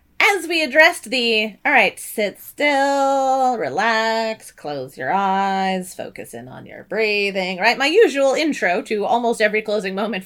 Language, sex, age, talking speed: English, female, 30-49, 150 wpm